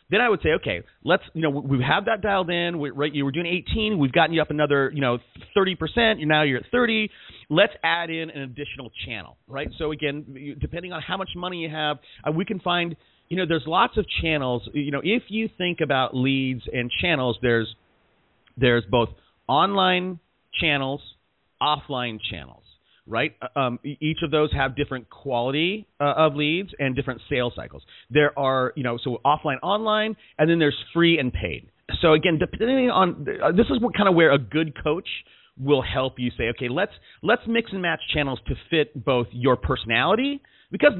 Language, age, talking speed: English, 40-59, 190 wpm